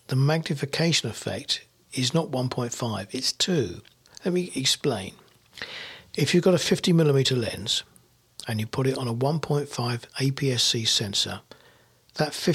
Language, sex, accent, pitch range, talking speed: English, male, British, 115-155 Hz, 130 wpm